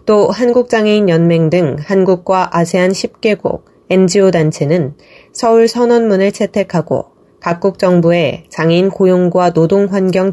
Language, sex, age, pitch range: Korean, female, 20-39, 160-200 Hz